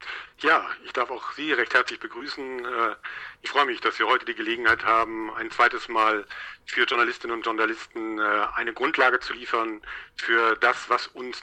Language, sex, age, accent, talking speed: German, male, 50-69, German, 170 wpm